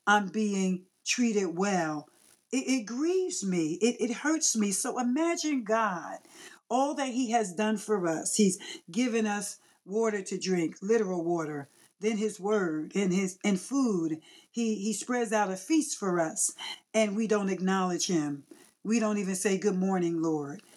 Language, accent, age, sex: English, American, 50-69, female